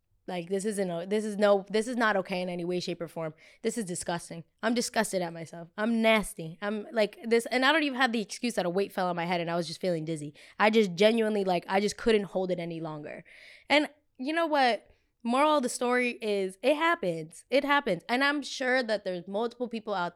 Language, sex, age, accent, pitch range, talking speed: English, female, 20-39, American, 175-220 Hz, 240 wpm